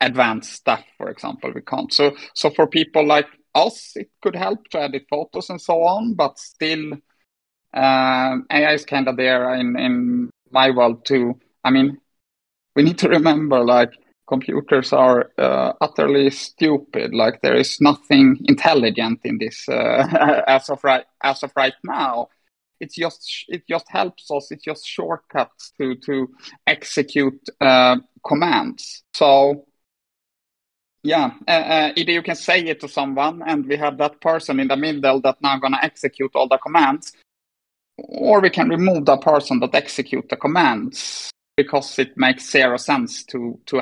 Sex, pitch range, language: male, 130-155 Hz, English